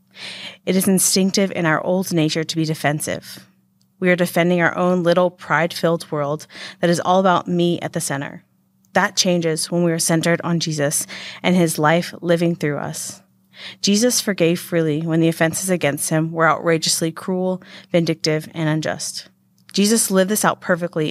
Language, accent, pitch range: English, American, 155-185 Hz